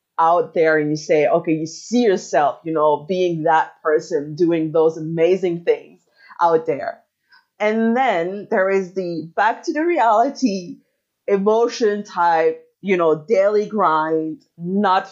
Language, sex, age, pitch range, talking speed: English, female, 30-49, 165-235 Hz, 145 wpm